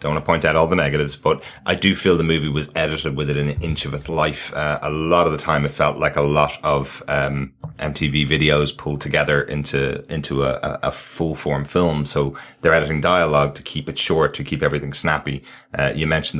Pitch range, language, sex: 75-80 Hz, English, male